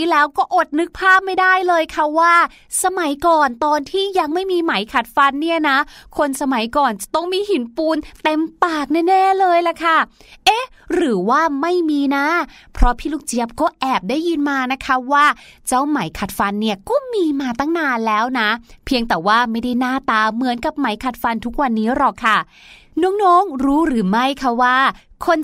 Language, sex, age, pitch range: Thai, female, 20-39, 235-320 Hz